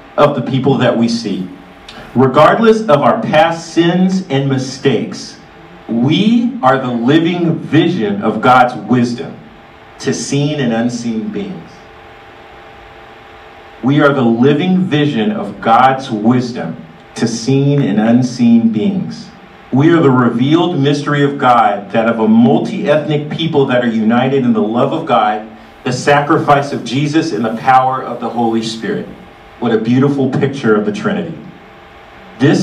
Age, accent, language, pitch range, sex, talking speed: 50-69, American, English, 120-160 Hz, male, 145 wpm